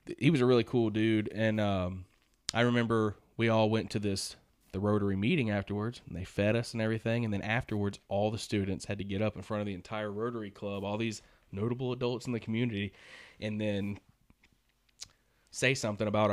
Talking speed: 200 wpm